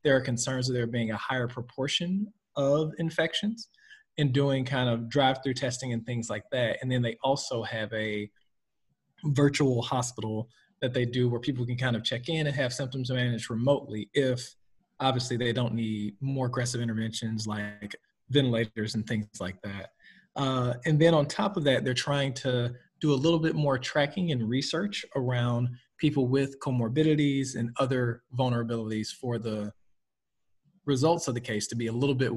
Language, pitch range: English, 115-140 Hz